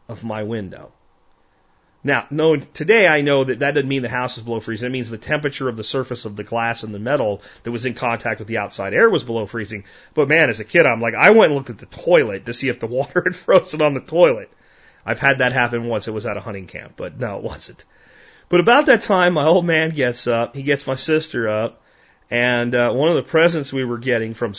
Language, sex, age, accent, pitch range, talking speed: English, male, 30-49, American, 110-145 Hz, 255 wpm